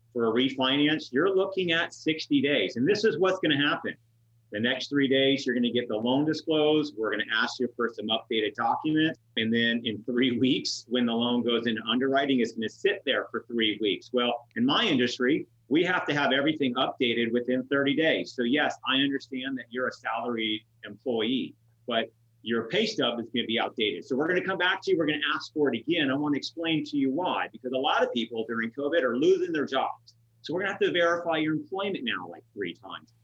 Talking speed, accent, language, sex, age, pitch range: 235 wpm, American, English, male, 30-49, 115-150 Hz